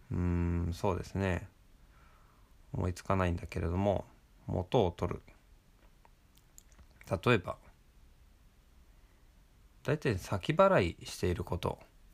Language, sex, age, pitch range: Japanese, male, 20-39, 85-110 Hz